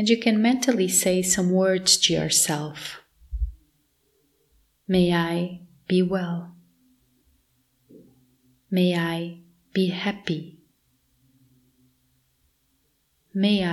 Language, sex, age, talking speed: English, female, 30-49, 80 wpm